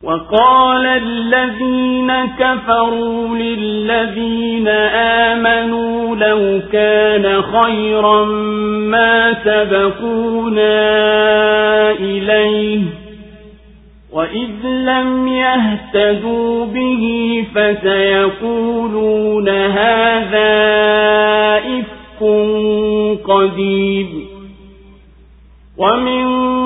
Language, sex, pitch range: Swahili, male, 210-230 Hz